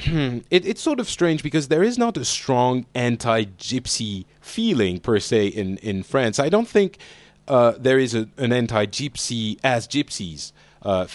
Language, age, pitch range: English, 30-49, 110-150 Hz